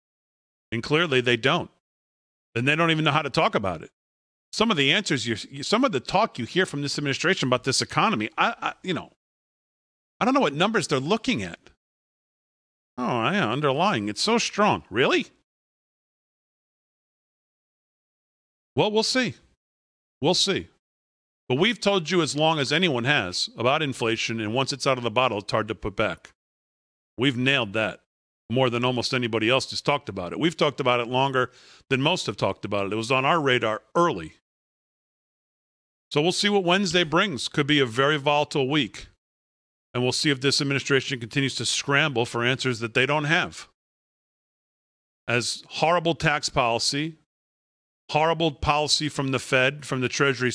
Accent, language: American, English